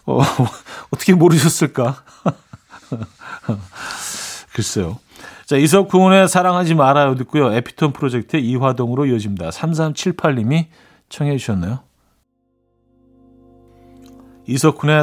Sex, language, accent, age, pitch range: male, Korean, native, 40-59, 115-160 Hz